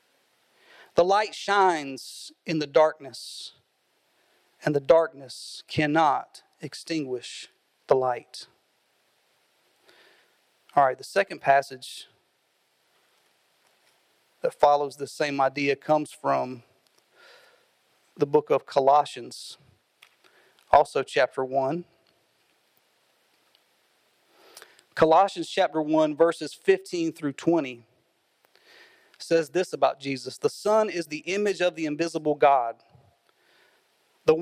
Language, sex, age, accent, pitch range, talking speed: English, male, 40-59, American, 145-195 Hz, 90 wpm